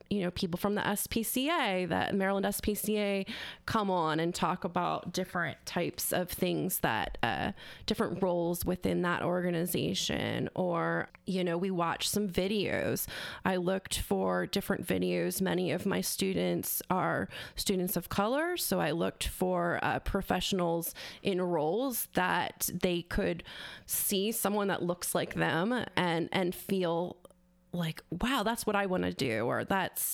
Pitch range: 175-205 Hz